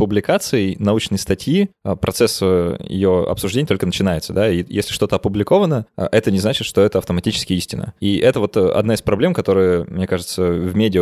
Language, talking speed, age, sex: Russian, 170 wpm, 20-39, male